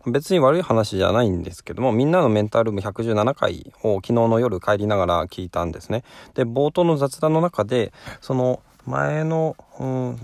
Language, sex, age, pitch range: Japanese, male, 20-39, 100-130 Hz